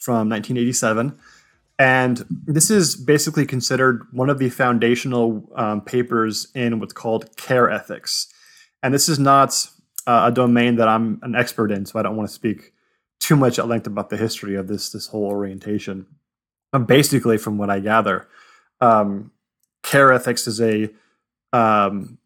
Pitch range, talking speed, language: 110-130 Hz, 160 wpm, English